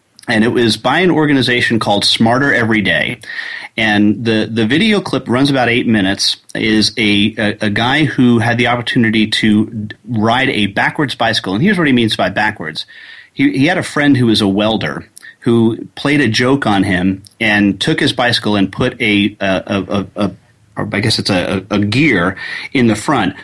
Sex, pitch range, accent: male, 105-125 Hz, American